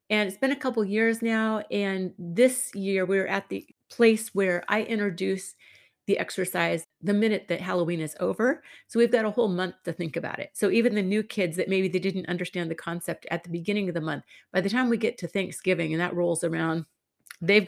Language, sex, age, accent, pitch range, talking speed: English, female, 40-59, American, 175-210 Hz, 220 wpm